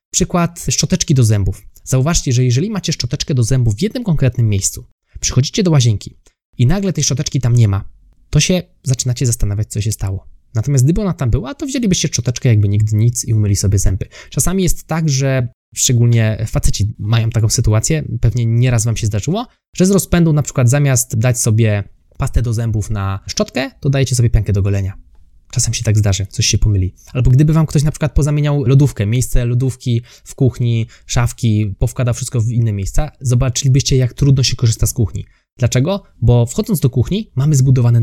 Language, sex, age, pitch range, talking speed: Polish, male, 20-39, 115-140 Hz, 190 wpm